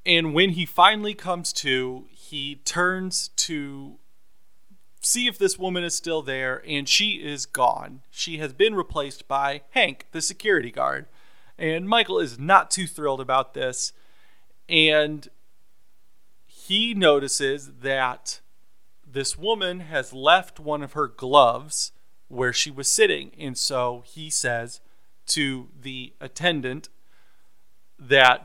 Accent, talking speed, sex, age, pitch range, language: American, 130 wpm, male, 30-49, 135-180 Hz, English